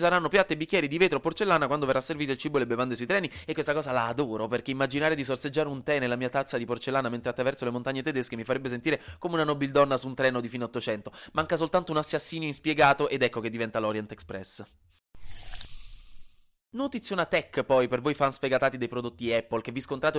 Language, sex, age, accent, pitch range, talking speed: Italian, male, 20-39, native, 120-155 Hz, 225 wpm